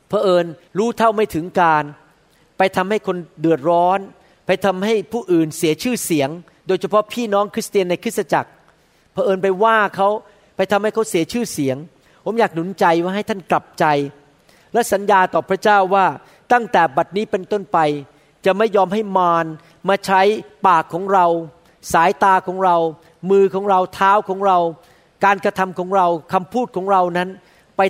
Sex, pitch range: male, 170-210 Hz